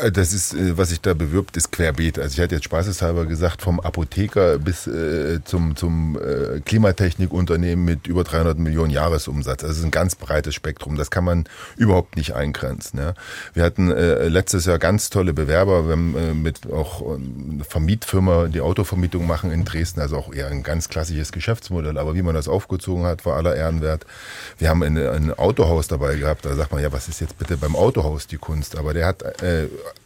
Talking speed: 195 wpm